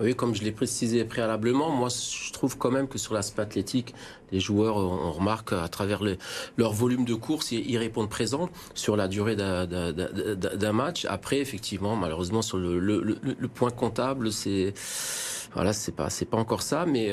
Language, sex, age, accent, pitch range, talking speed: French, male, 40-59, French, 105-125 Hz, 195 wpm